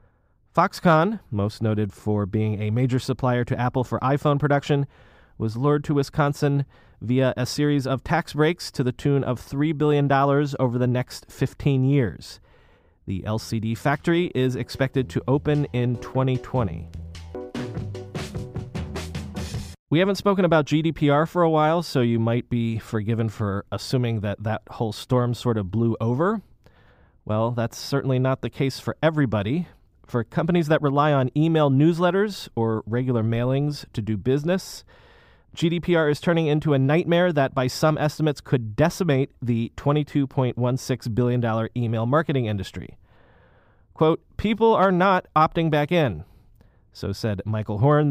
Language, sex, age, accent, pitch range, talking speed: English, male, 30-49, American, 115-150 Hz, 145 wpm